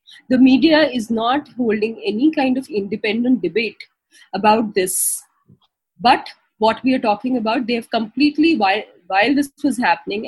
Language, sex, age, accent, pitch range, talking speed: English, female, 20-39, Indian, 180-240 Hz, 150 wpm